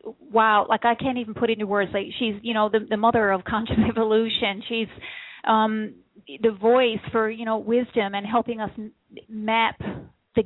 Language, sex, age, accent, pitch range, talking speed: English, female, 40-59, American, 210-235 Hz, 180 wpm